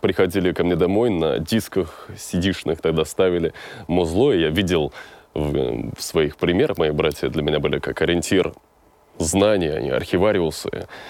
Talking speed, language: 145 wpm, Russian